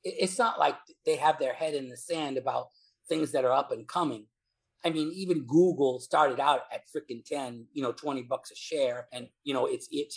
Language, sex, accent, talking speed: English, male, American, 220 wpm